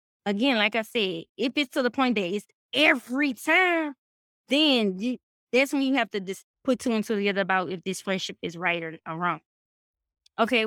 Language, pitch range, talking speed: English, 200-250 Hz, 190 wpm